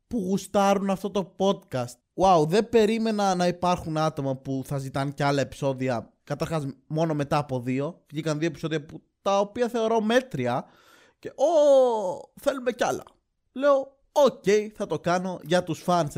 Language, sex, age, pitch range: Greek, male, 20-39, 145-215 Hz